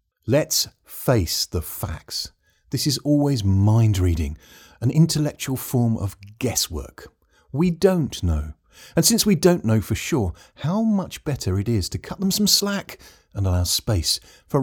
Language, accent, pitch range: English, British, 85-120 Hz